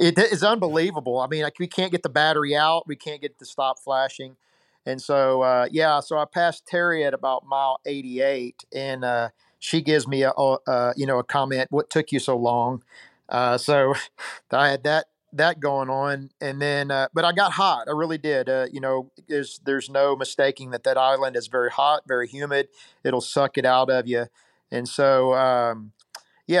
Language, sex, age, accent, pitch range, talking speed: English, male, 40-59, American, 125-145 Hz, 200 wpm